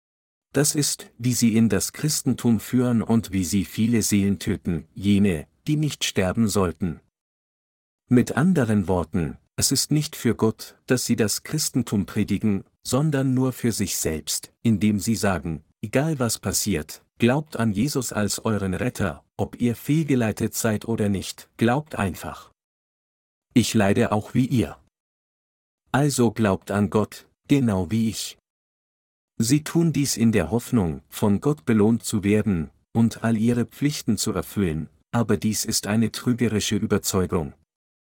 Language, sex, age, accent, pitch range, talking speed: German, male, 50-69, German, 100-125 Hz, 145 wpm